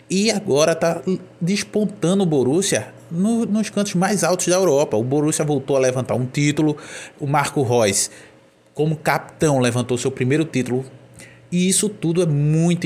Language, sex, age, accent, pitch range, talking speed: Portuguese, male, 20-39, Brazilian, 115-155 Hz, 160 wpm